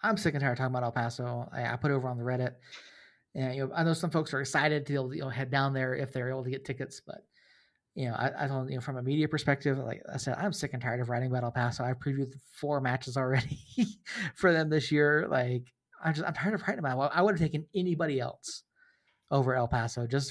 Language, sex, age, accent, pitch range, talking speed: English, male, 30-49, American, 125-150 Hz, 280 wpm